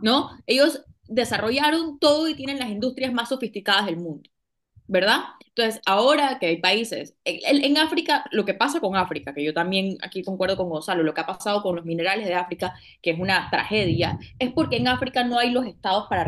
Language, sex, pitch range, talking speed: Spanish, female, 190-270 Hz, 205 wpm